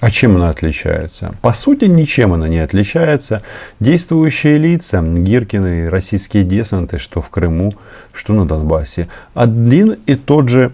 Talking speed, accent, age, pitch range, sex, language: 140 wpm, native, 40-59, 85-115 Hz, male, Russian